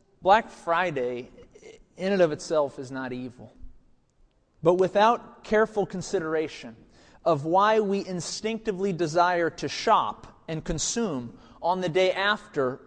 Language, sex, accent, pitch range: English, male, American, 150-195 Hz